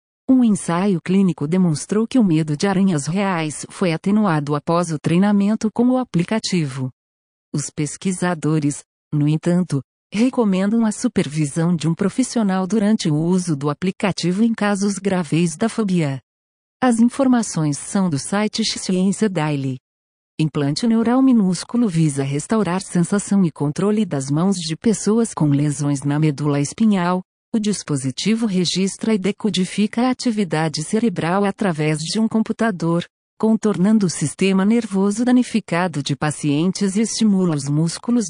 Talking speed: 135 wpm